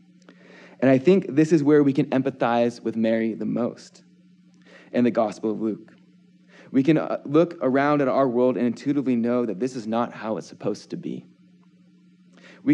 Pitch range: 120-160 Hz